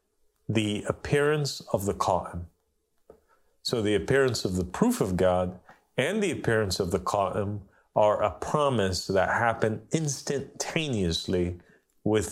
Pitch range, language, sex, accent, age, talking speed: 95-110 Hz, English, male, American, 40-59, 125 wpm